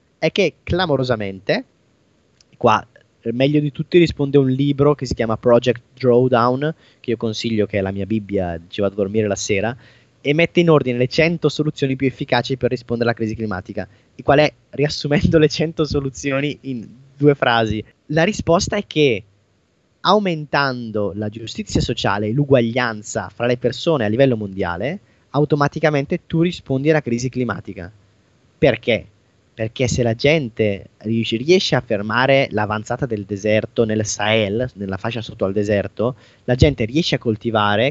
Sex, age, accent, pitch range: male, 20-39, native, 110-145 Hz